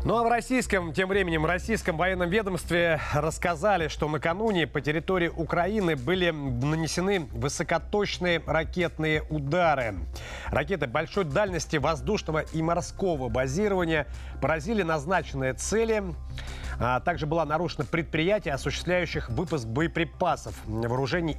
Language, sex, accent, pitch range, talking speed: Russian, male, native, 135-175 Hz, 110 wpm